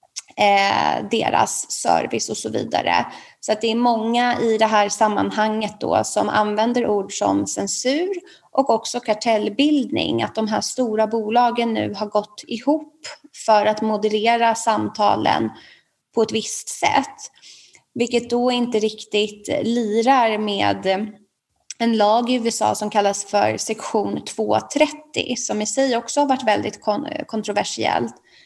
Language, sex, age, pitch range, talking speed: Swedish, female, 20-39, 210-245 Hz, 130 wpm